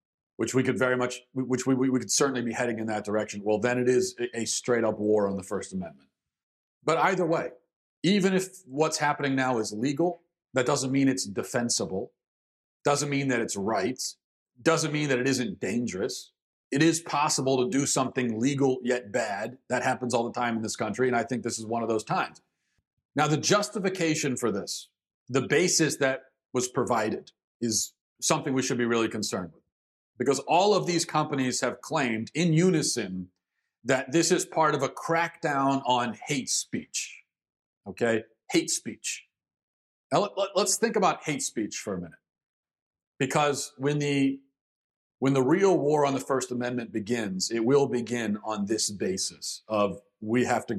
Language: English